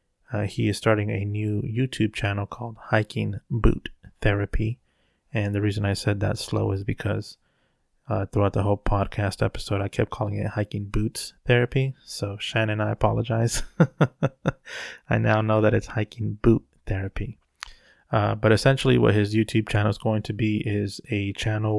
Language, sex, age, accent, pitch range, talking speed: English, male, 20-39, American, 100-115 Hz, 170 wpm